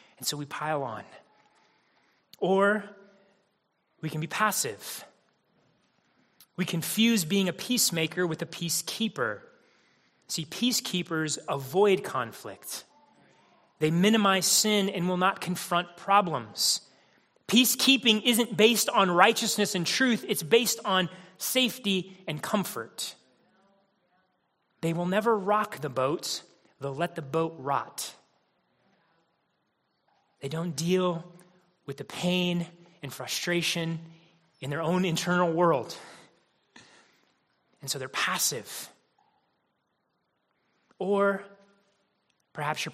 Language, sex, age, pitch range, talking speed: English, male, 30-49, 165-200 Hz, 105 wpm